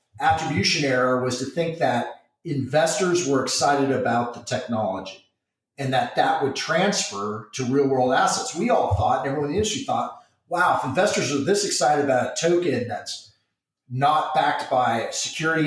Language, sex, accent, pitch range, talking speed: English, male, American, 120-160 Hz, 165 wpm